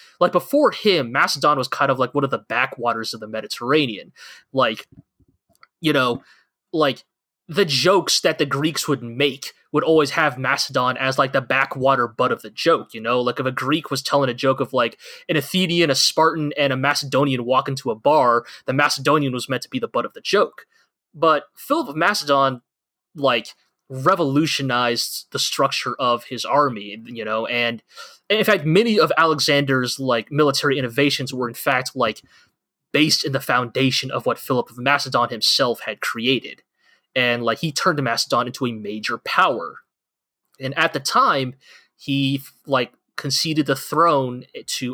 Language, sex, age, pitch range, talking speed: English, male, 20-39, 125-160 Hz, 170 wpm